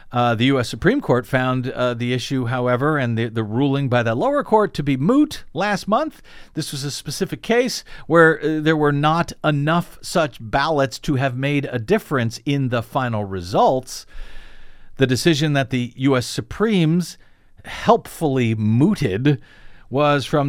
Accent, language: American, English